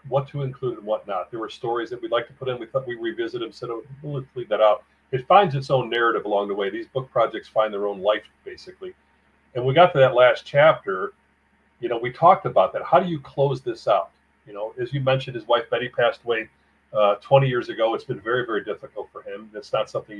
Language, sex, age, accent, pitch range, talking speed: English, male, 40-59, American, 115-155 Hz, 245 wpm